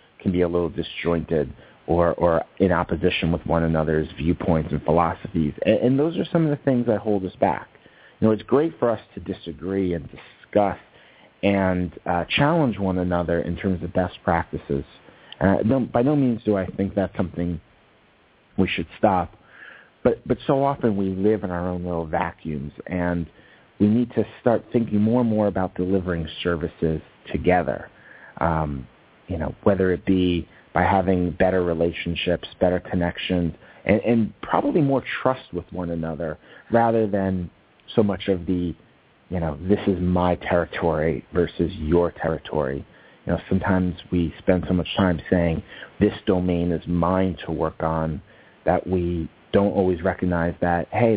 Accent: American